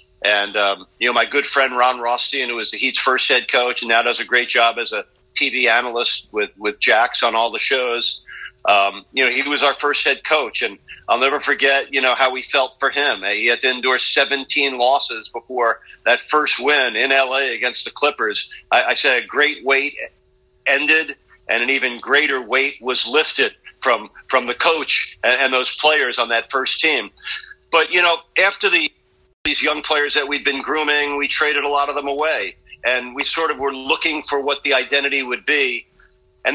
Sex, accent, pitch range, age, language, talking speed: male, American, 125-145 Hz, 40-59, English, 210 wpm